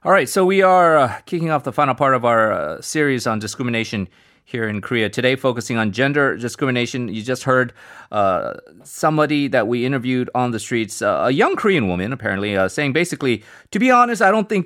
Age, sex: 30-49, male